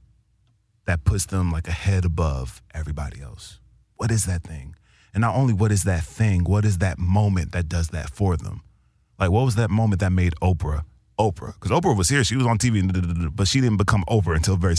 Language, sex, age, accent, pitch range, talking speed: English, male, 30-49, American, 90-105 Hz, 220 wpm